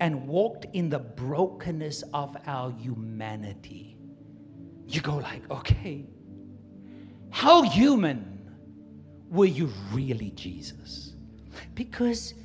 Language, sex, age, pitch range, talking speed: English, male, 60-79, 125-200 Hz, 90 wpm